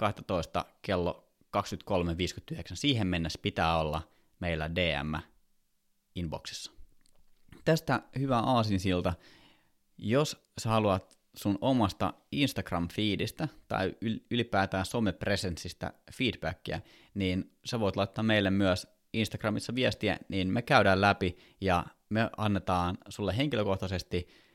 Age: 30-49